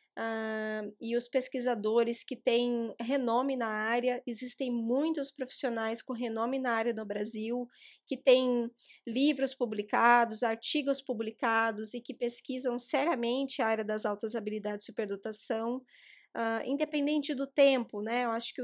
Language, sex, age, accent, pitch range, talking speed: Portuguese, female, 20-39, Brazilian, 225-260 Hz, 130 wpm